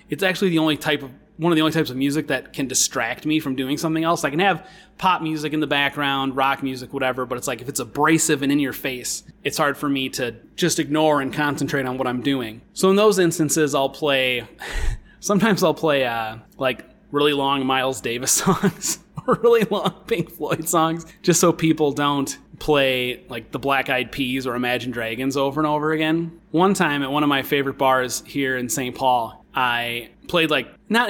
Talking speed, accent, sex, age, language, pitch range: 210 wpm, American, male, 30-49, English, 135-165 Hz